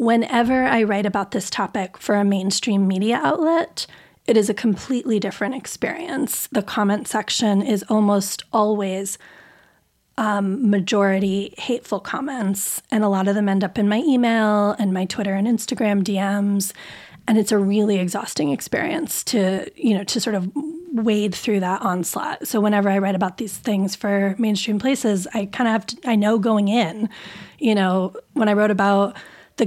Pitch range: 200-235 Hz